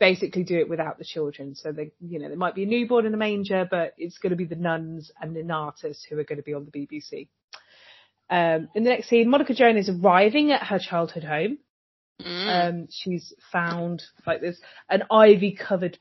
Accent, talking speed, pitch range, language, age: British, 215 wpm, 170-210 Hz, English, 30-49